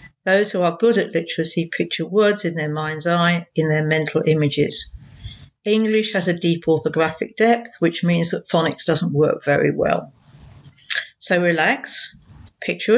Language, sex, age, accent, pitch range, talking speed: English, female, 50-69, British, 165-200 Hz, 155 wpm